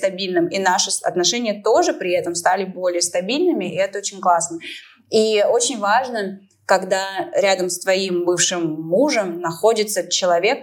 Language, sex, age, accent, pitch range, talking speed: Russian, female, 20-39, native, 170-205 Hz, 135 wpm